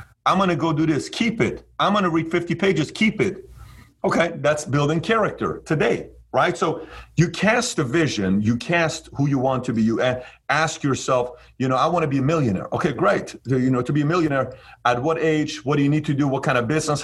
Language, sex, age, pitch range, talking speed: English, male, 40-59, 125-160 Hz, 230 wpm